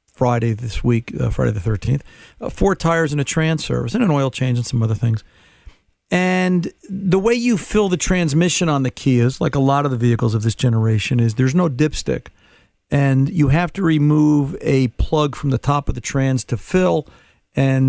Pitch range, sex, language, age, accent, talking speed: 125-165 Hz, male, English, 50-69, American, 210 wpm